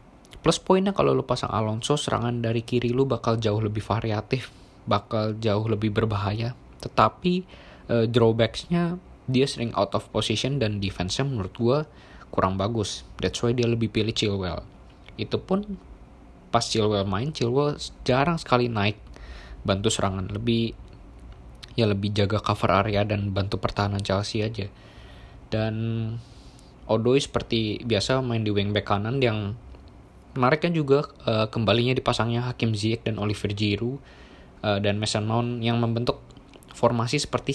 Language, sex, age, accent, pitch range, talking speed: Indonesian, male, 20-39, native, 105-125 Hz, 140 wpm